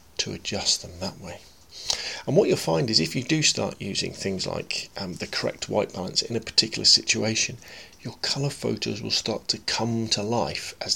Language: English